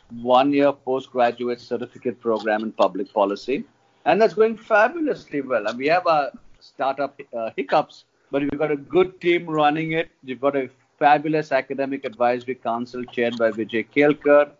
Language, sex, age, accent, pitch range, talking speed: English, male, 50-69, Indian, 125-150 Hz, 155 wpm